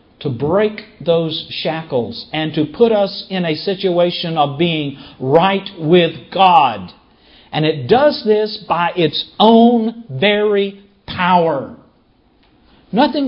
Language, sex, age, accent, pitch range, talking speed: English, male, 50-69, American, 145-195 Hz, 115 wpm